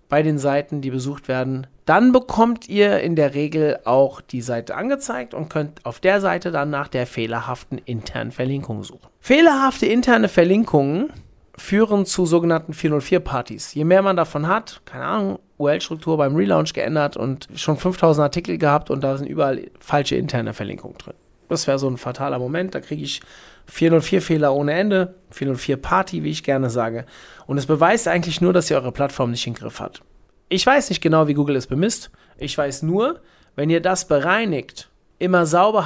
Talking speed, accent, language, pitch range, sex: 180 wpm, German, German, 130-185 Hz, male